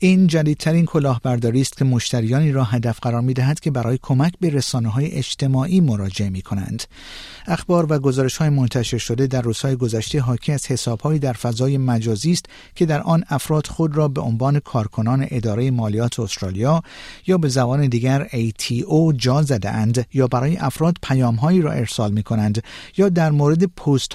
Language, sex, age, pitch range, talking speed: Persian, male, 50-69, 115-155 Hz, 165 wpm